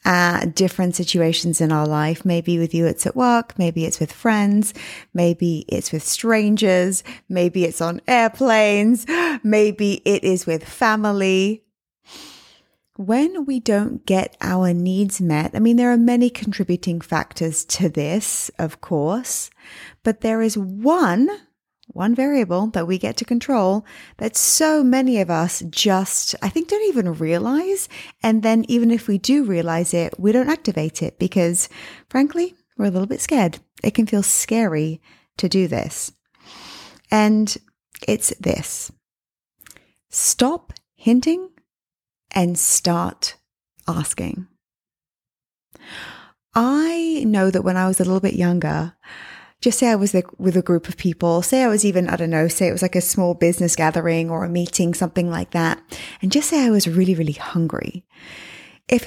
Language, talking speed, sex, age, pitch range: English, 155 wpm, female, 20-39, 175-230 Hz